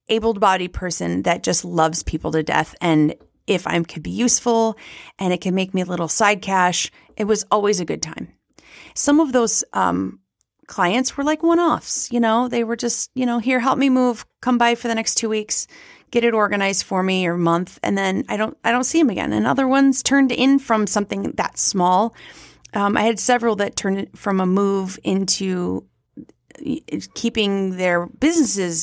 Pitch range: 170-230 Hz